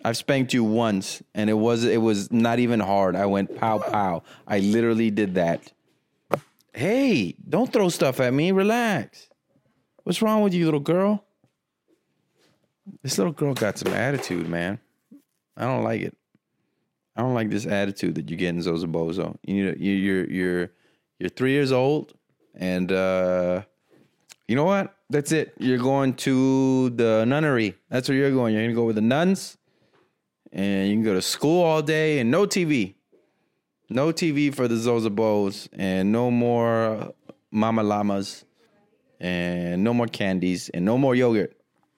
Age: 30-49